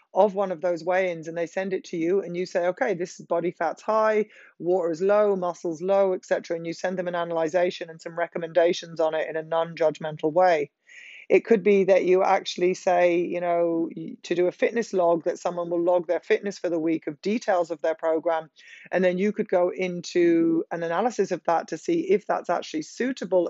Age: 20-39